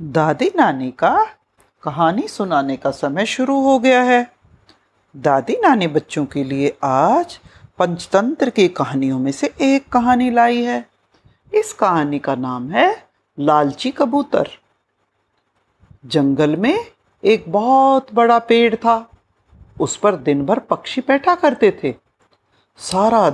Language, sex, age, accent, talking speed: Hindi, female, 50-69, native, 125 wpm